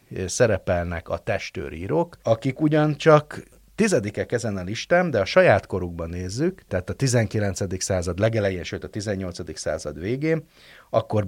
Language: Hungarian